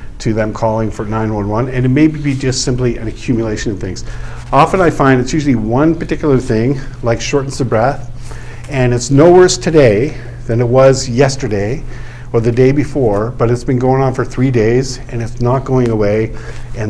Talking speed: 190 wpm